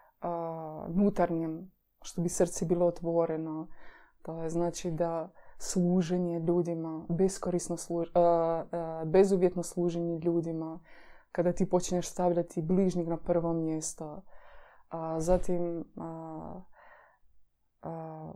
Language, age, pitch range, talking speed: Croatian, 20-39, 170-185 Hz, 100 wpm